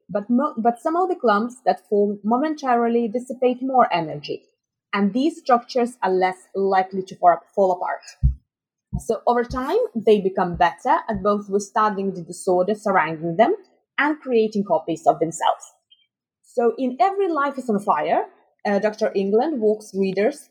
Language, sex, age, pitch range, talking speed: English, female, 20-39, 190-270 Hz, 160 wpm